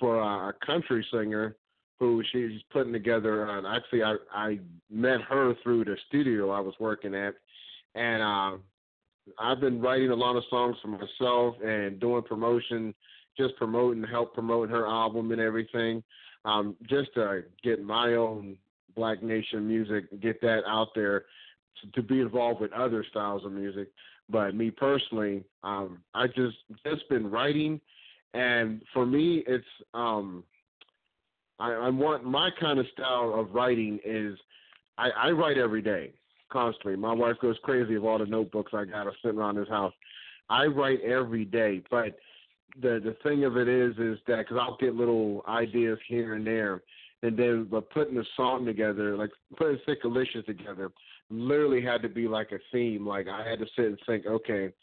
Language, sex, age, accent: English, male, 30-49, American